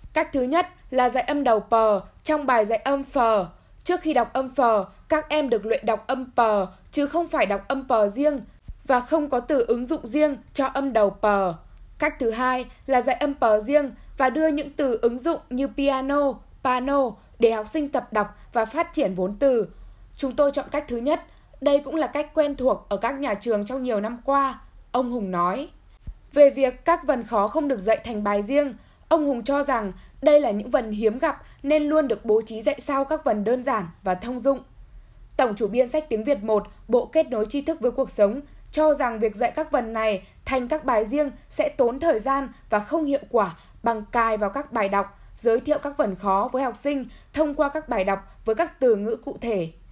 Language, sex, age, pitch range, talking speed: Vietnamese, female, 10-29, 225-290 Hz, 225 wpm